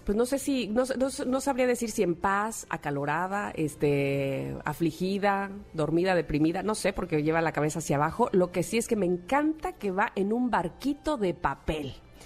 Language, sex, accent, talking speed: Spanish, female, Mexican, 190 wpm